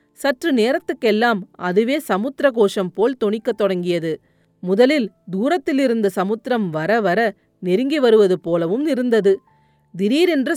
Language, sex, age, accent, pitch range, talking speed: Tamil, female, 30-49, native, 190-260 Hz, 100 wpm